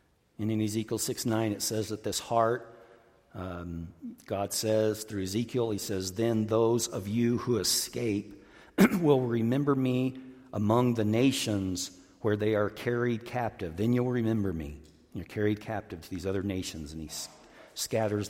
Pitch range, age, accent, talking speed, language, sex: 95-115 Hz, 50-69, American, 155 wpm, English, male